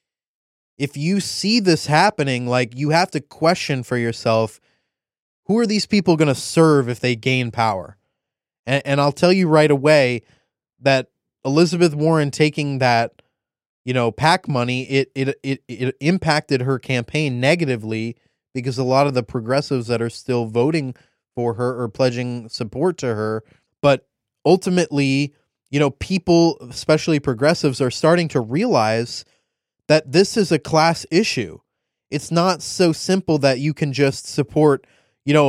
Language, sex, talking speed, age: English, male, 155 wpm, 20-39